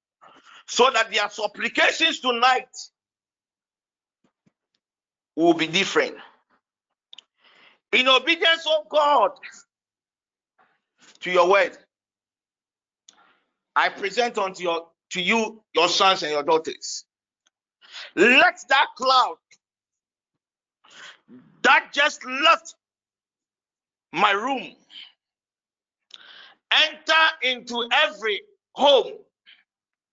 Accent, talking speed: Nigerian, 75 wpm